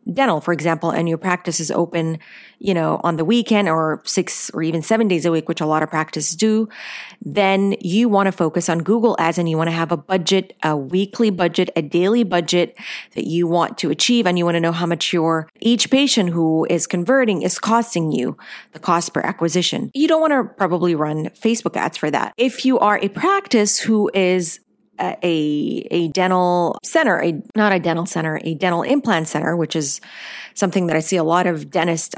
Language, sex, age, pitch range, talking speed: English, female, 30-49, 160-200 Hz, 210 wpm